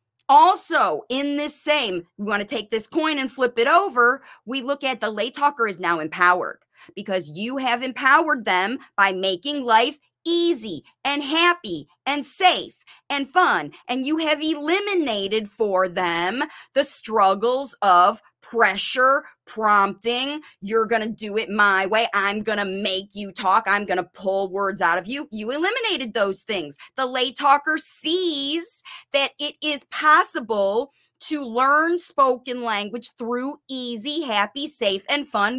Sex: female